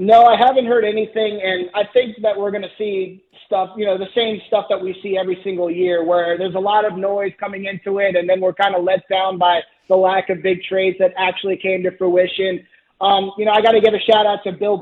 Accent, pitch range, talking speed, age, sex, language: American, 190-215 Hz, 260 wpm, 30-49, male, English